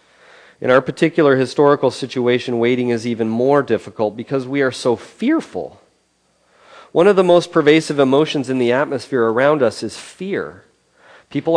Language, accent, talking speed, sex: English, American, 150 wpm, male